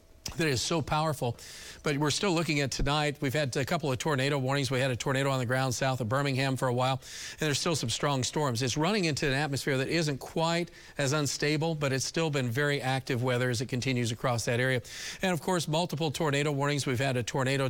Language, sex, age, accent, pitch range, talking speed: English, male, 40-59, American, 125-145 Hz, 235 wpm